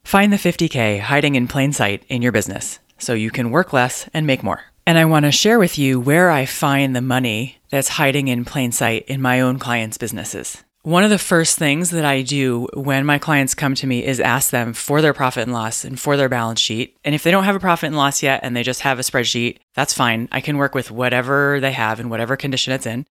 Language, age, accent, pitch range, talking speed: English, 30-49, American, 120-145 Hz, 250 wpm